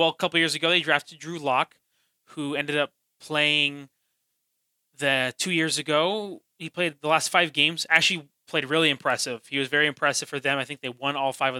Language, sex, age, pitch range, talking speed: English, male, 20-39, 140-165 Hz, 205 wpm